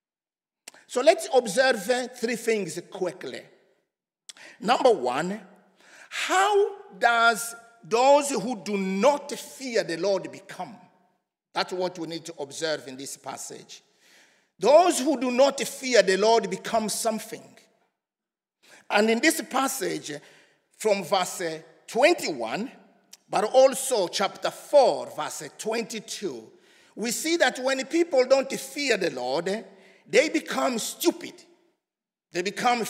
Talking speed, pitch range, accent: 115 wpm, 200-285 Hz, Nigerian